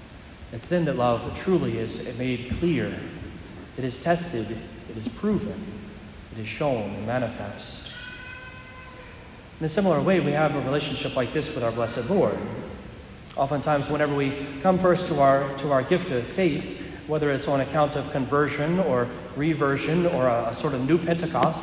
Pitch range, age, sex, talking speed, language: 125-170 Hz, 40-59, male, 165 wpm, English